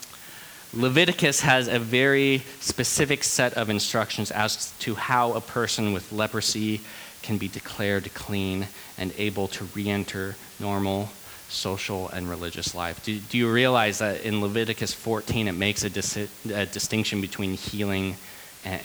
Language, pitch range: English, 95-120 Hz